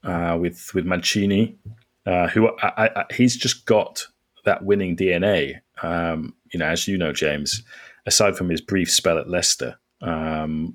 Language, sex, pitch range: English, male, 85-110 Hz